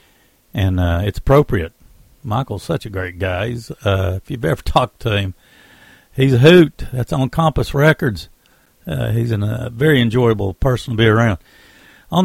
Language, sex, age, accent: English, male, 60-79, American